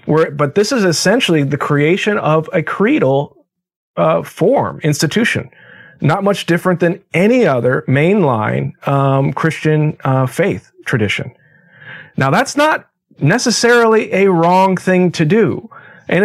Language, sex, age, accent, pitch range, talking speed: English, male, 40-59, American, 140-185 Hz, 130 wpm